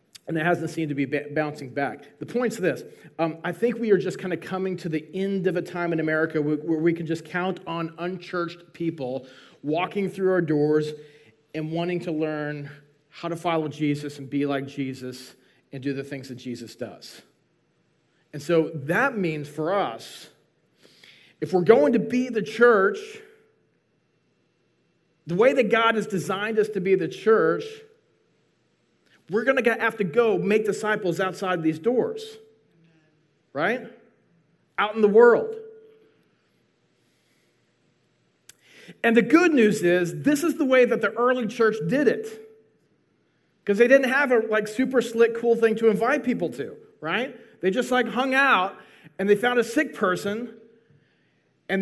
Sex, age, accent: male, 30-49, American